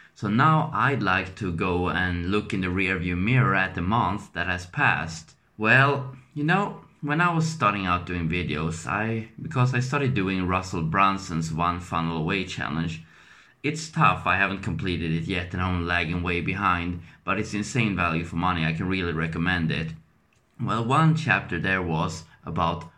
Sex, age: male, 20-39